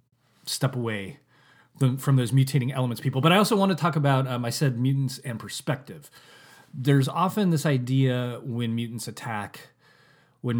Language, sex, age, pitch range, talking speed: English, male, 30-49, 110-150 Hz, 160 wpm